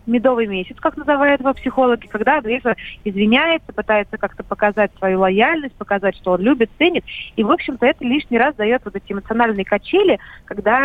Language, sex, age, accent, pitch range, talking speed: Russian, female, 30-49, native, 210-275 Hz, 170 wpm